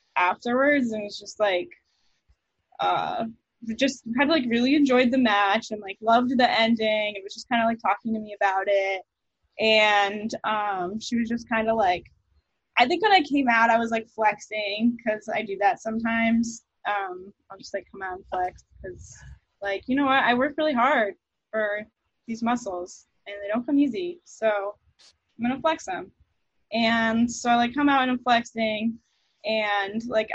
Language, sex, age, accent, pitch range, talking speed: English, female, 10-29, American, 205-255 Hz, 190 wpm